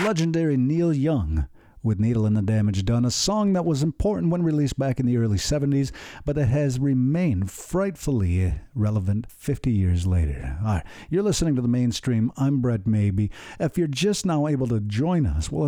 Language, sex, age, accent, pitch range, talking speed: English, male, 50-69, American, 110-150 Hz, 190 wpm